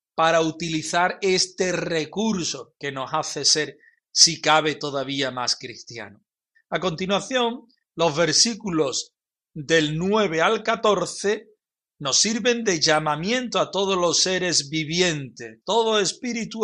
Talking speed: 115 wpm